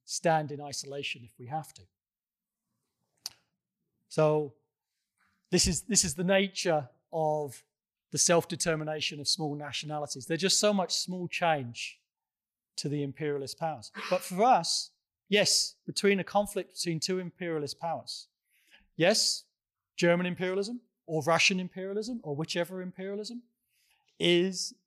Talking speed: 120 wpm